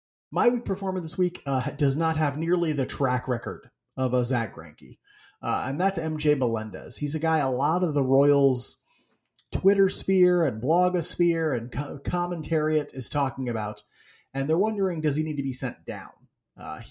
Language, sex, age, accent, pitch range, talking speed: English, male, 30-49, American, 125-160 Hz, 180 wpm